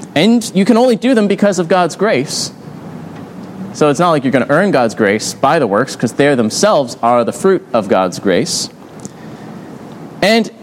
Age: 30-49